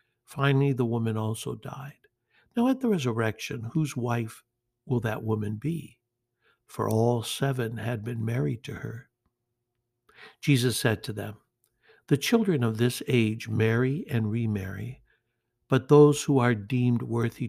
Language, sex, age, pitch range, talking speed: English, male, 60-79, 115-135 Hz, 140 wpm